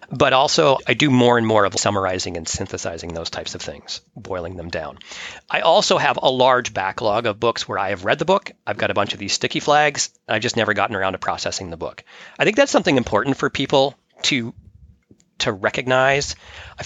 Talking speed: 215 wpm